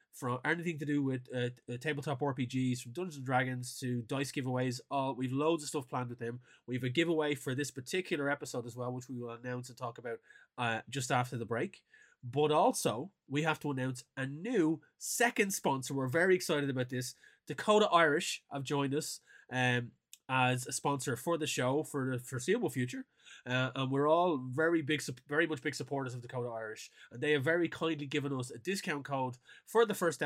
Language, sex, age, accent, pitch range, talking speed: English, male, 20-39, Irish, 125-155 Hz, 200 wpm